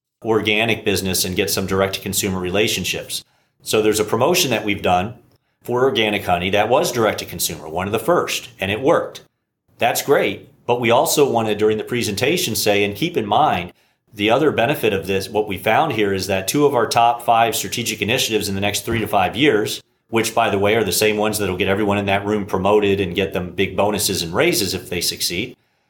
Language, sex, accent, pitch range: English, male, American, 95-110 Hz